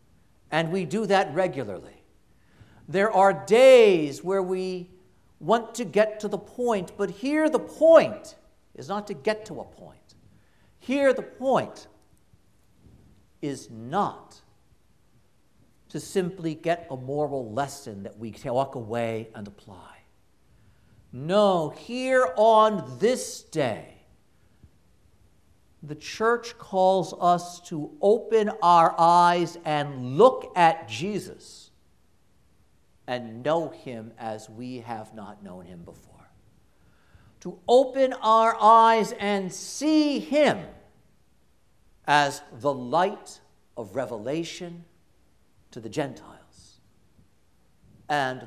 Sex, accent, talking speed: male, American, 110 wpm